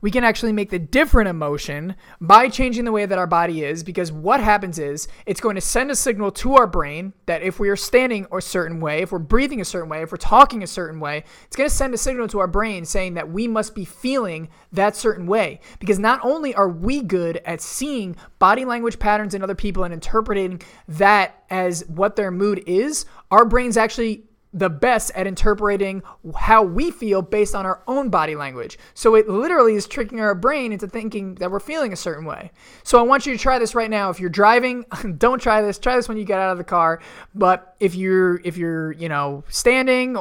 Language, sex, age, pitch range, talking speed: English, male, 20-39, 170-225 Hz, 225 wpm